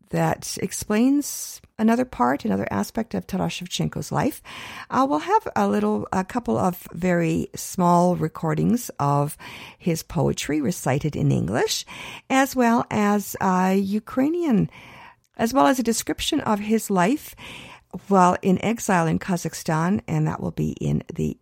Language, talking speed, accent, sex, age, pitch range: English, 135 wpm, American, female, 50-69, 170-230 Hz